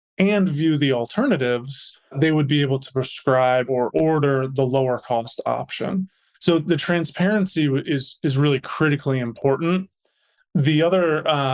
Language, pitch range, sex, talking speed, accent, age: English, 130-150 Hz, male, 140 wpm, American, 20-39